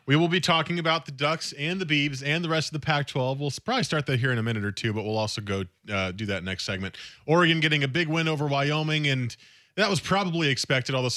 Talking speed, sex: 260 wpm, male